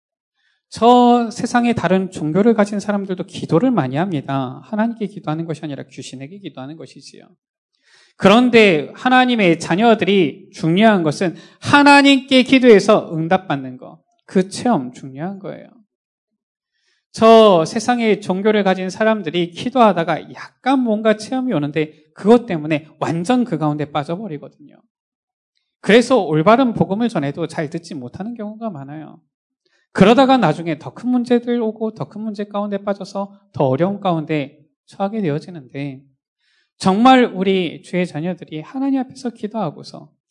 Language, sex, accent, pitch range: Korean, male, native, 155-235 Hz